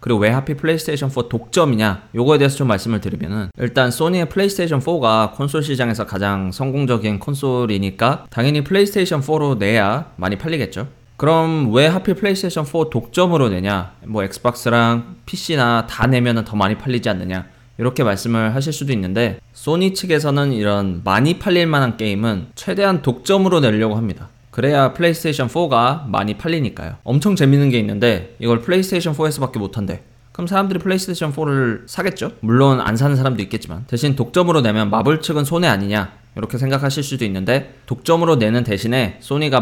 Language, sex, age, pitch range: Korean, male, 20-39, 110-150 Hz